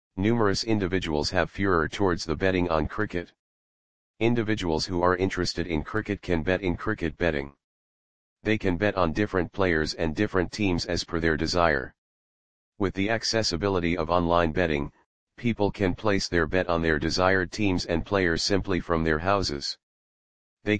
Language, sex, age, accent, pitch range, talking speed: English, male, 40-59, American, 80-95 Hz, 160 wpm